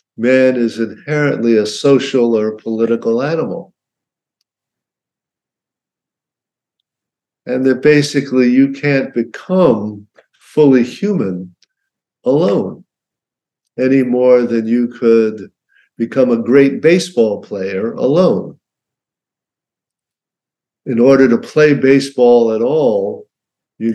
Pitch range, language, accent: 115-145 Hz, English, American